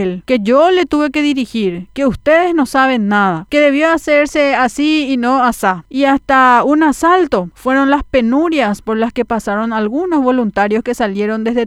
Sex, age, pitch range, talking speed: female, 40-59, 210-270 Hz, 175 wpm